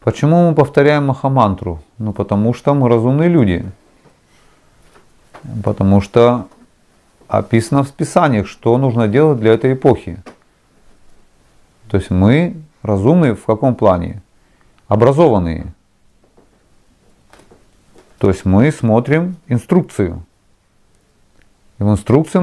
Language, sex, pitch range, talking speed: Russian, male, 100-140 Hz, 95 wpm